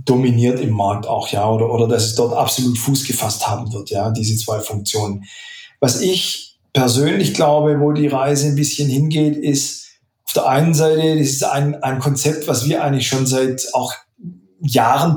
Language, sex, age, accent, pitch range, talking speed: German, male, 40-59, German, 130-160 Hz, 180 wpm